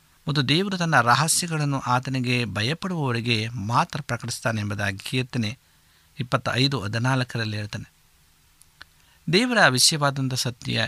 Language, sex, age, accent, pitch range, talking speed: Kannada, male, 50-69, native, 110-150 Hz, 90 wpm